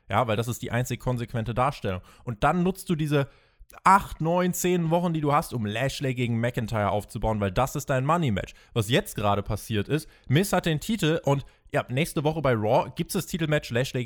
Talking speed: 220 wpm